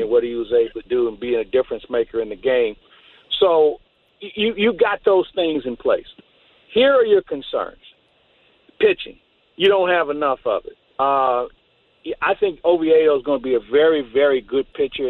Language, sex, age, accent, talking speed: English, male, 50-69, American, 185 wpm